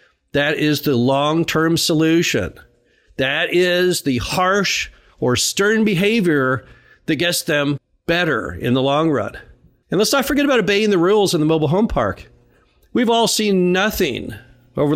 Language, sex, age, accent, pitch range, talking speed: English, male, 50-69, American, 130-190 Hz, 155 wpm